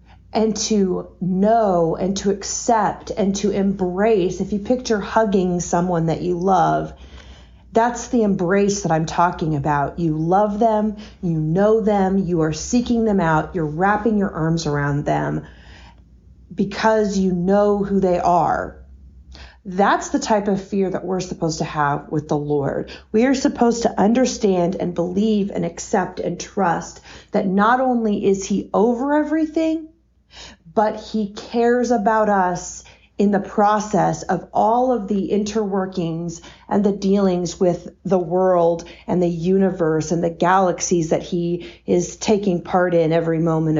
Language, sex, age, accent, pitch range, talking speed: English, female, 40-59, American, 170-210 Hz, 150 wpm